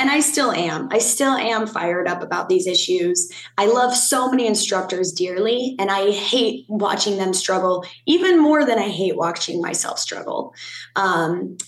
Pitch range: 185-230 Hz